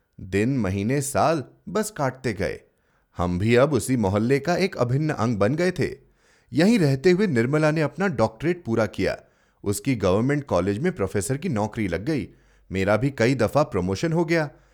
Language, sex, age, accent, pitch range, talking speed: Hindi, male, 30-49, native, 110-180 Hz, 175 wpm